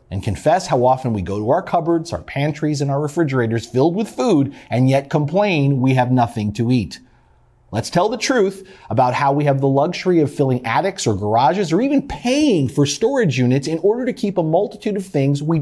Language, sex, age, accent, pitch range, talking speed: English, male, 40-59, American, 95-140 Hz, 210 wpm